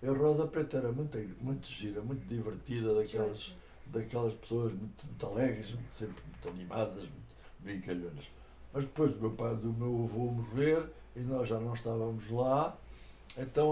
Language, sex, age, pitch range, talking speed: Portuguese, male, 60-79, 115-145 Hz, 155 wpm